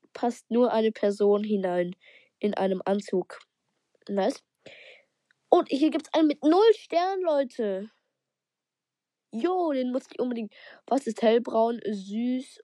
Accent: German